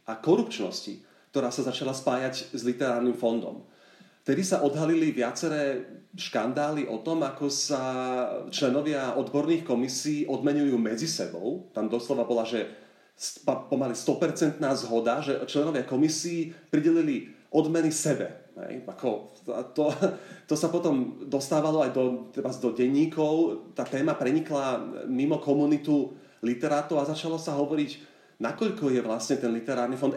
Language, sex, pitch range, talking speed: Slovak, male, 130-155 Hz, 125 wpm